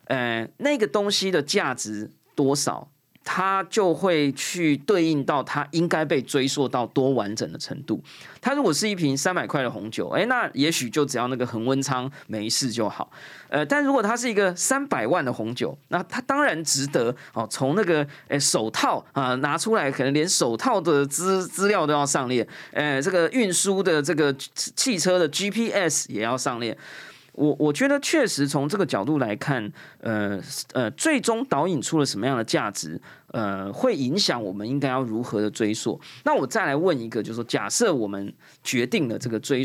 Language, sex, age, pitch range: Chinese, male, 20-39, 120-175 Hz